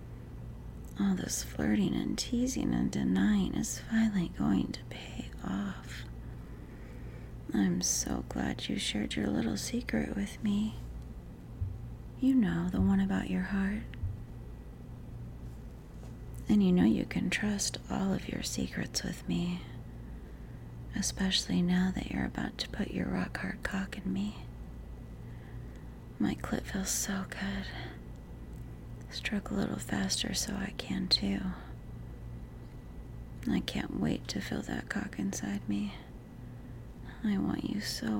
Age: 30-49